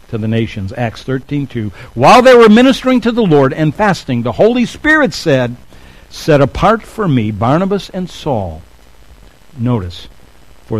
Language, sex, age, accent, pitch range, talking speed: English, male, 60-79, American, 120-175 Hz, 150 wpm